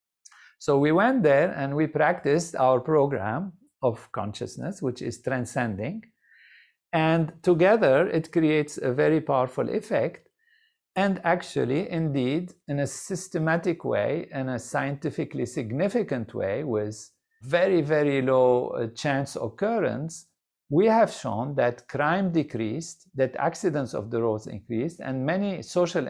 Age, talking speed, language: 50-69, 125 wpm, English